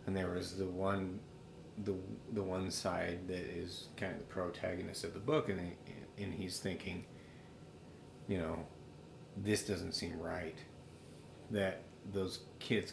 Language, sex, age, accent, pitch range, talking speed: English, male, 30-49, American, 90-105 Hz, 150 wpm